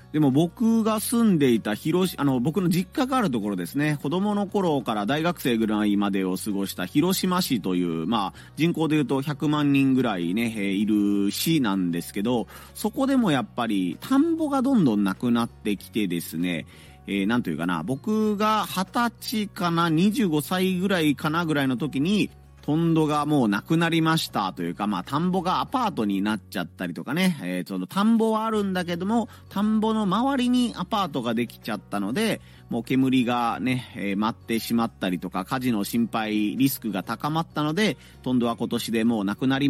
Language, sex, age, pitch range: Japanese, male, 30-49, 105-170 Hz